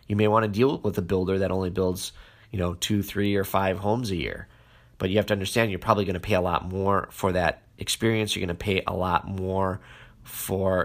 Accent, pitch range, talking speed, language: American, 95-110 Hz, 245 wpm, English